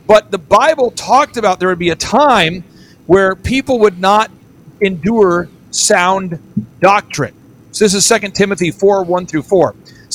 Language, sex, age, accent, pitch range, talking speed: English, male, 50-69, American, 170-220 Hz, 160 wpm